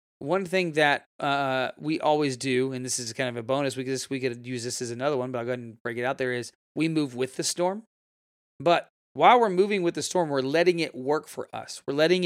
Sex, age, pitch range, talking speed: male, 30-49, 130-165 Hz, 250 wpm